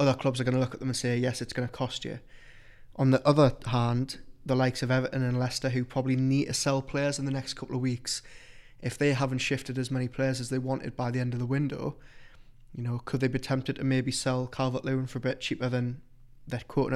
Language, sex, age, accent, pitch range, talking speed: English, male, 20-39, British, 125-135 Hz, 255 wpm